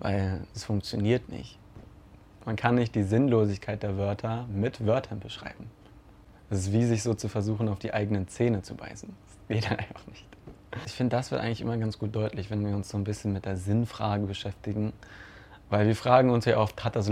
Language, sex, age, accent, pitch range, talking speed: German, male, 20-39, German, 100-115 Hz, 205 wpm